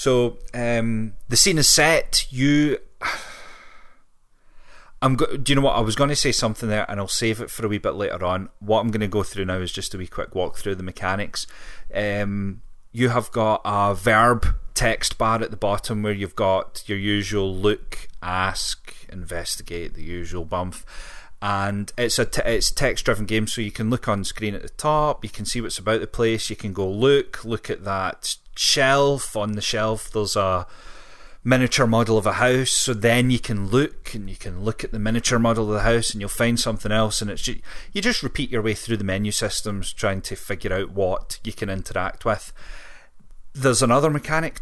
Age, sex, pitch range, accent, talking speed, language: 30-49, male, 100-125 Hz, British, 205 wpm, English